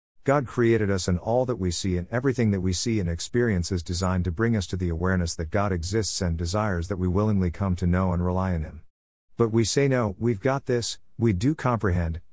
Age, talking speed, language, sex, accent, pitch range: 50-69, 235 wpm, English, male, American, 90-115 Hz